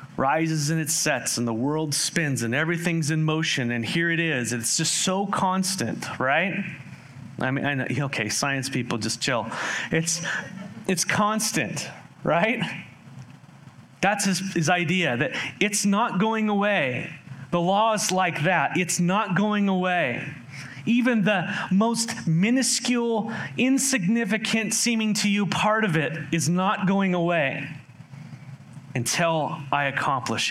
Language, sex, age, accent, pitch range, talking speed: English, male, 30-49, American, 130-180 Hz, 140 wpm